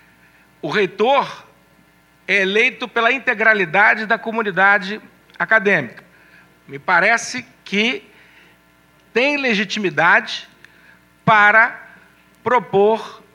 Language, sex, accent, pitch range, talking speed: Portuguese, male, Brazilian, 180-260 Hz, 70 wpm